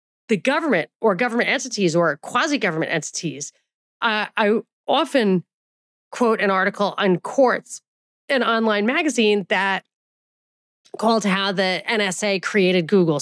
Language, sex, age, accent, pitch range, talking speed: English, female, 30-49, American, 175-225 Hz, 120 wpm